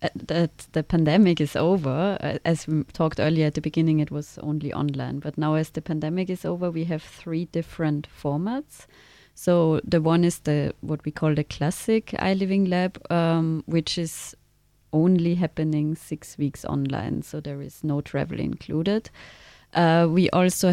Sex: female